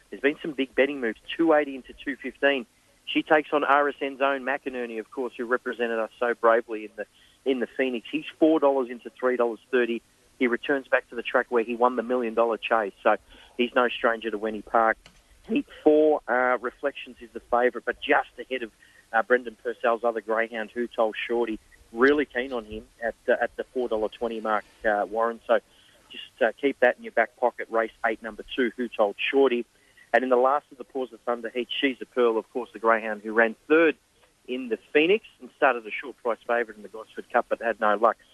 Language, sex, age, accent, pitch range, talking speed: English, male, 30-49, Australian, 110-130 Hz, 220 wpm